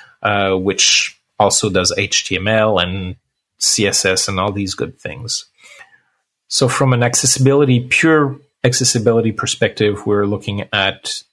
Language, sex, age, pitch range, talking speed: English, male, 30-49, 105-130 Hz, 115 wpm